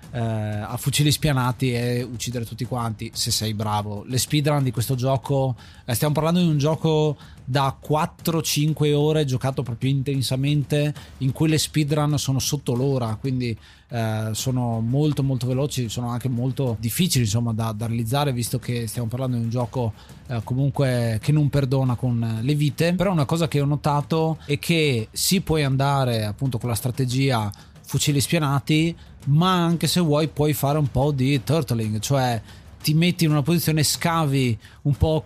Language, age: Italian, 20-39